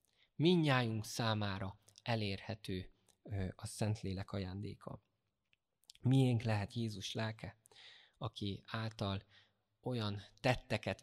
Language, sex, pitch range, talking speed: Hungarian, male, 95-115 Hz, 75 wpm